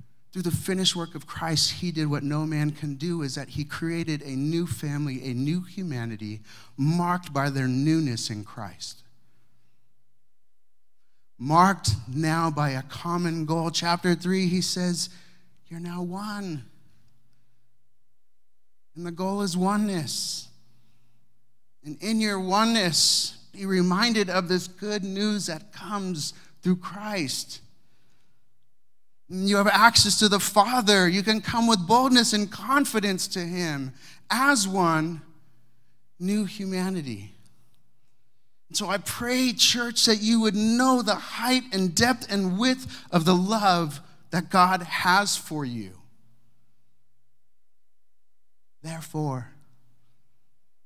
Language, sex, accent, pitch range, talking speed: English, male, American, 120-190 Hz, 120 wpm